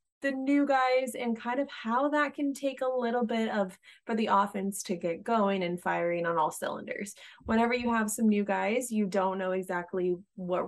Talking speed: 200 wpm